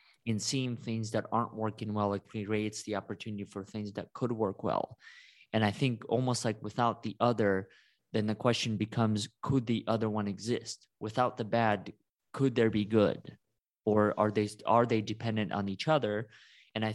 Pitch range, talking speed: 105-120 Hz, 185 wpm